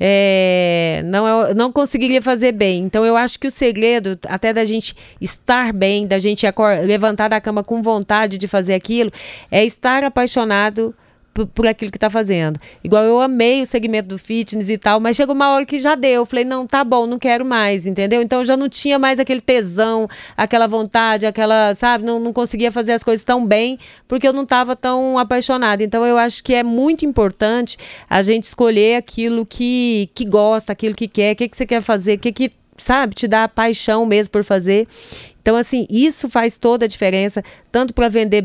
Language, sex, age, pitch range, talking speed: Portuguese, female, 30-49, 205-240 Hz, 205 wpm